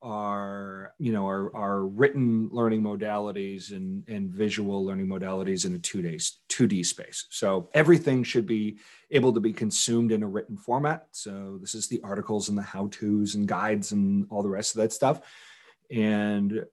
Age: 40-59